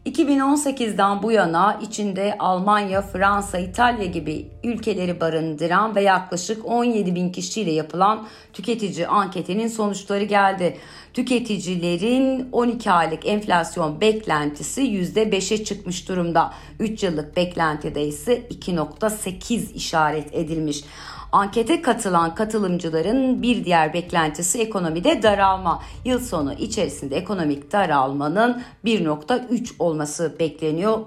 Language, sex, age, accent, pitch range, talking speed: Turkish, female, 50-69, native, 160-220 Hz, 100 wpm